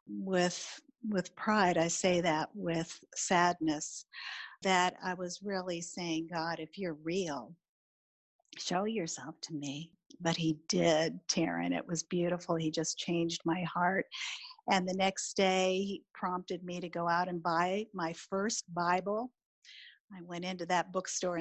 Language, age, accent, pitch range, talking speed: English, 50-69, American, 175-240 Hz, 150 wpm